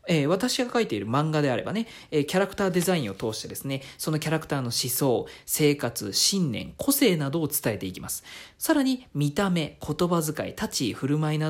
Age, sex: 40-59, male